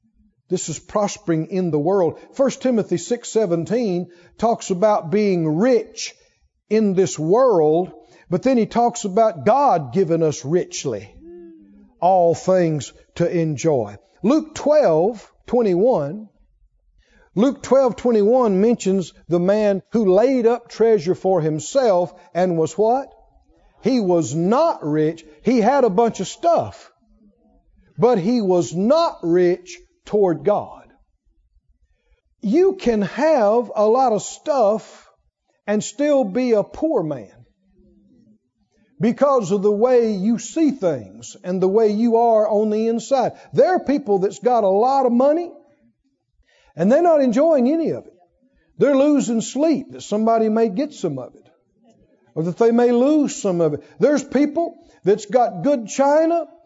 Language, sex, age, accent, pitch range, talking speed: English, male, 50-69, American, 175-255 Hz, 140 wpm